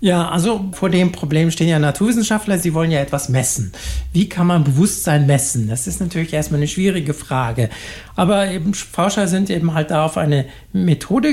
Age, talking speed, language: 60-79, 185 wpm, German